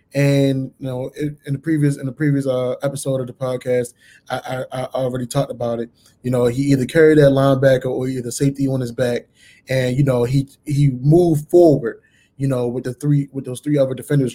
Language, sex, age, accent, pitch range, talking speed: English, male, 20-39, American, 125-140 Hz, 215 wpm